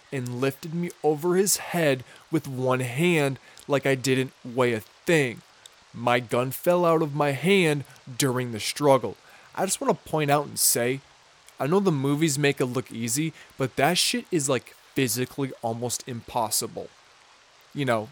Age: 20-39